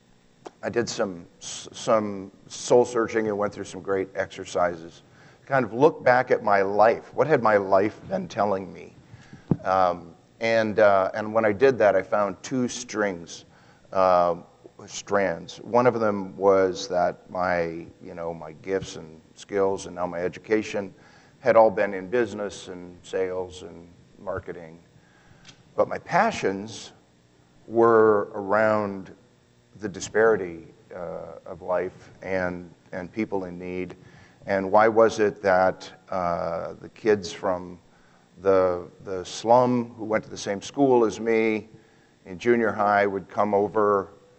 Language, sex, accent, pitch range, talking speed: English, male, American, 90-110 Hz, 145 wpm